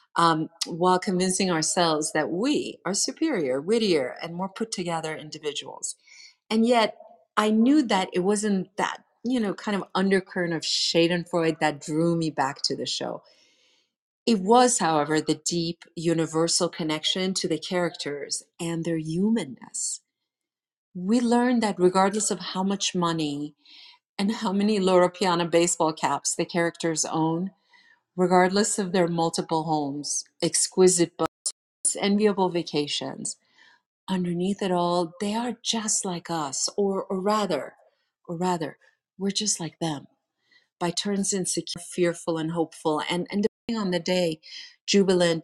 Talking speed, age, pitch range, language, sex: 140 wpm, 40-59, 165-215 Hz, English, female